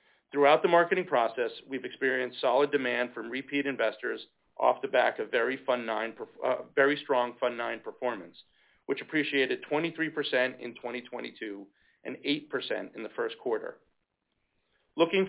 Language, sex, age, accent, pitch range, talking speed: English, male, 40-59, American, 125-160 Hz, 135 wpm